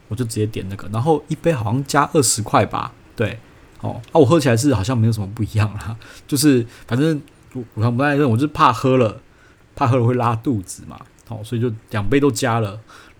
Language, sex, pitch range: Chinese, male, 110-135 Hz